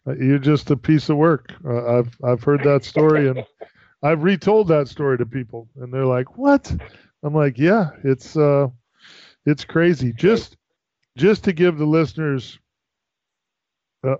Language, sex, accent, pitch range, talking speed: English, male, American, 125-160 Hz, 155 wpm